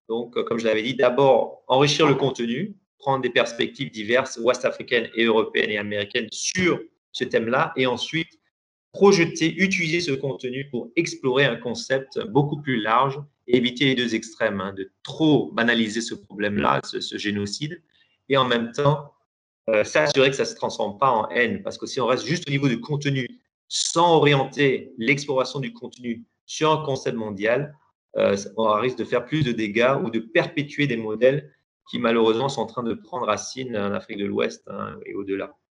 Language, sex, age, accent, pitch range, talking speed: English, male, 30-49, French, 115-160 Hz, 185 wpm